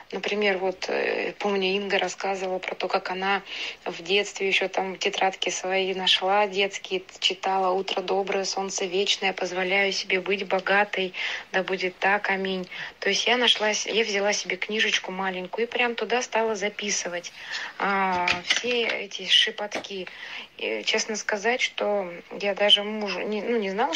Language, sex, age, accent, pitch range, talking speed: Russian, female, 20-39, native, 185-210 Hz, 145 wpm